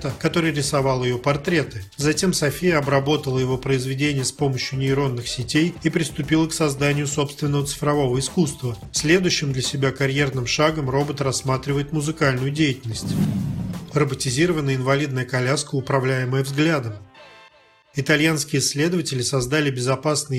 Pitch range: 130-150 Hz